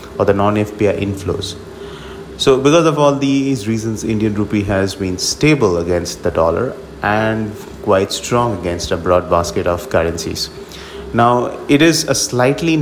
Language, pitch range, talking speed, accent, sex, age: English, 95-120 Hz, 150 wpm, Indian, male, 30-49